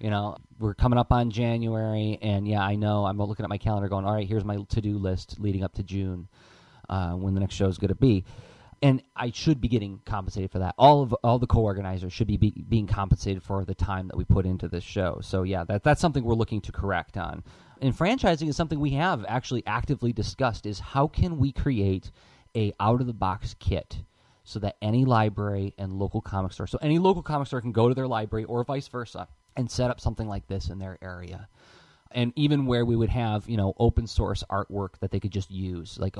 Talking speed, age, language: 235 wpm, 30-49, English